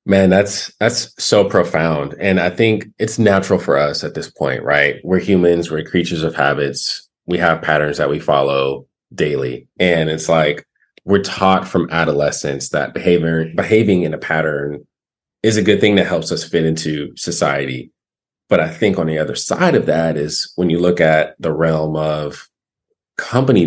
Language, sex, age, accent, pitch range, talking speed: English, male, 30-49, American, 75-90 Hz, 175 wpm